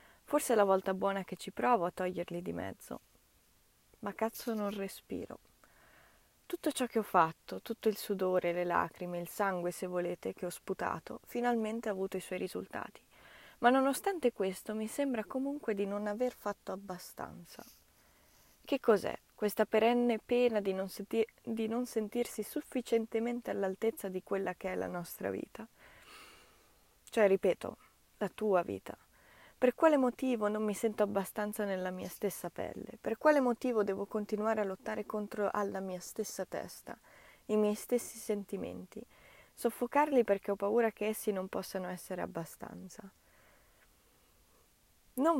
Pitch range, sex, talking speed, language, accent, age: 190-230 Hz, female, 145 wpm, Italian, native, 20-39